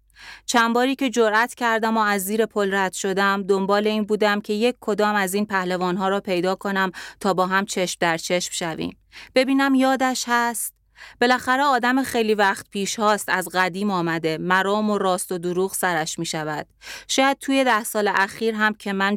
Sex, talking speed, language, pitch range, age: female, 180 wpm, Persian, 185-235 Hz, 30-49